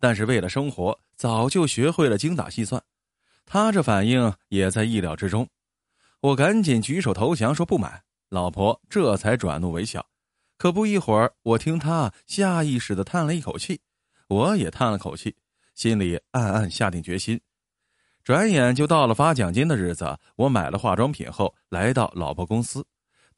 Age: 20-39